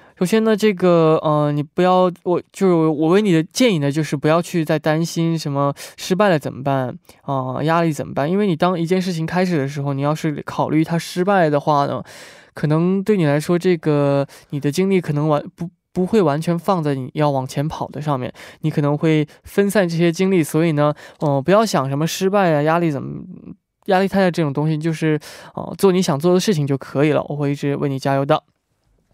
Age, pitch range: 20-39, 150-185 Hz